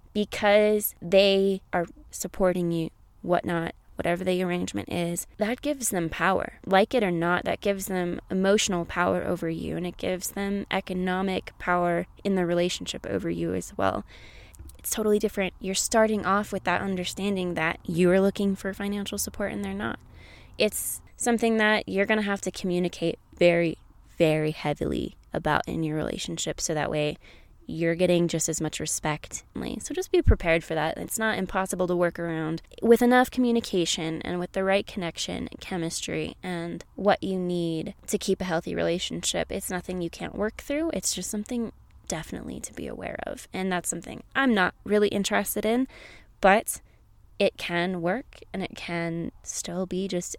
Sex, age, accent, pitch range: female, 20-39, American, 170-200 Hz